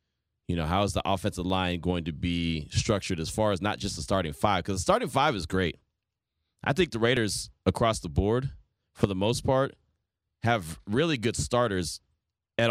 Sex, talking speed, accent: male, 195 wpm, American